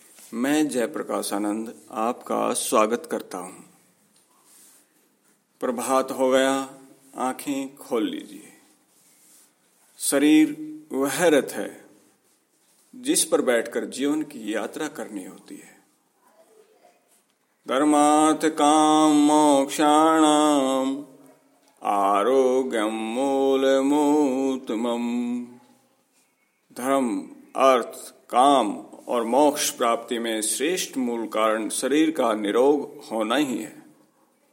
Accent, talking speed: native, 85 wpm